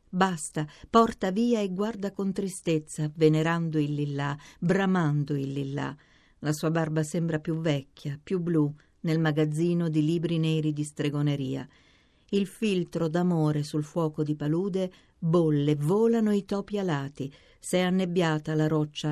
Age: 50-69